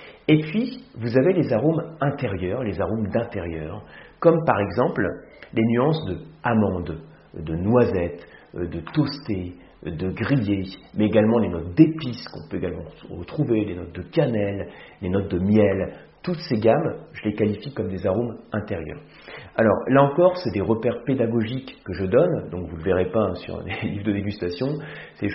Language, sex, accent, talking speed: French, male, French, 175 wpm